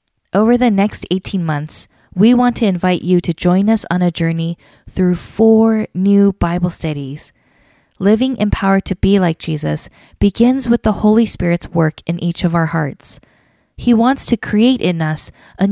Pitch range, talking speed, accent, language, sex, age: 165-215 Hz, 170 wpm, American, English, female, 20-39